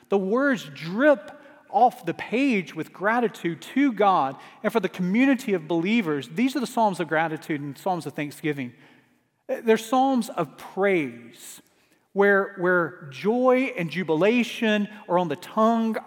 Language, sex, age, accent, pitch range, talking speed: English, male, 40-59, American, 175-230 Hz, 145 wpm